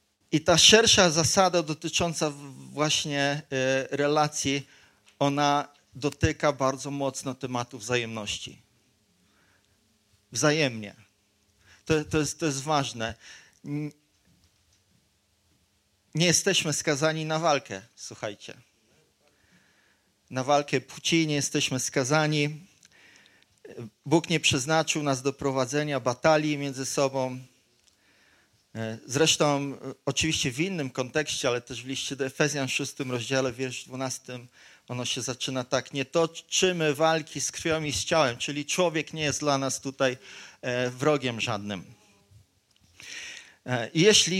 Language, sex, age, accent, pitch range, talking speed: Polish, male, 40-59, native, 125-160 Hz, 105 wpm